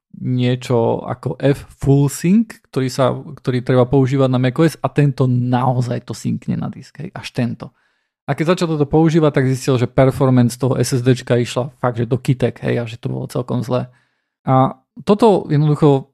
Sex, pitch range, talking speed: male, 125-140 Hz, 180 wpm